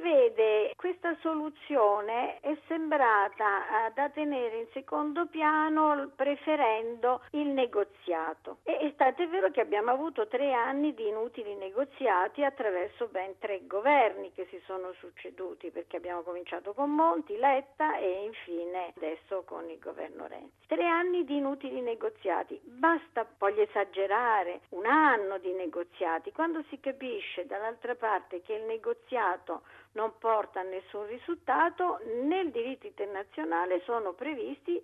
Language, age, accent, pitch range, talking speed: Italian, 50-69, native, 190-300 Hz, 135 wpm